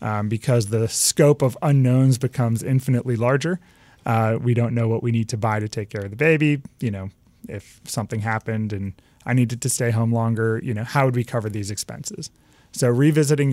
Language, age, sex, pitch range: English, 30-49, male, 110-130 Hz